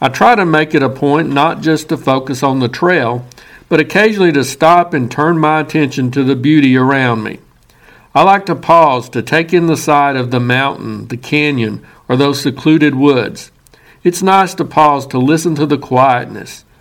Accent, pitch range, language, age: American, 130-160 Hz, English, 60-79